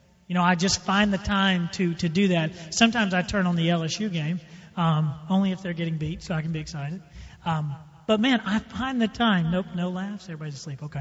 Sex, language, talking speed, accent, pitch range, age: male, English, 230 wpm, American, 170-215 Hz, 40-59